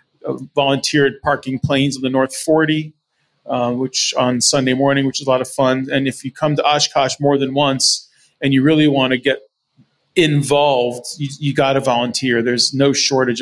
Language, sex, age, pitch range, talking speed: English, male, 30-49, 120-140 Hz, 190 wpm